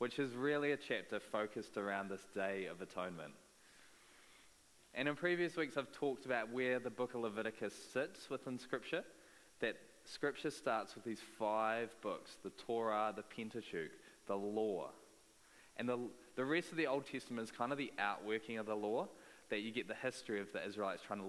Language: English